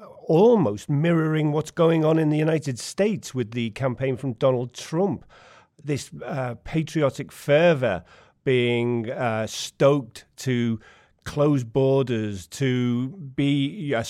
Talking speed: 120 wpm